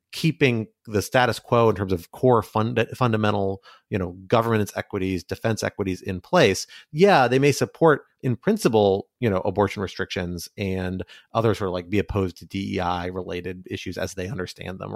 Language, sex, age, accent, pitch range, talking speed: English, male, 30-49, American, 95-125 Hz, 175 wpm